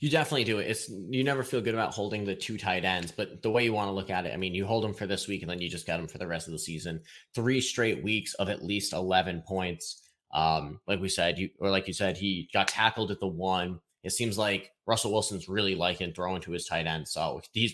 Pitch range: 95-115 Hz